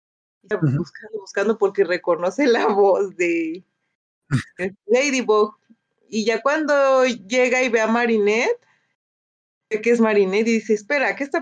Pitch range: 190-240 Hz